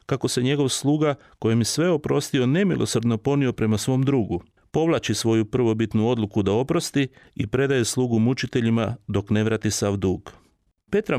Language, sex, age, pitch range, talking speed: Croatian, male, 40-59, 110-140 Hz, 155 wpm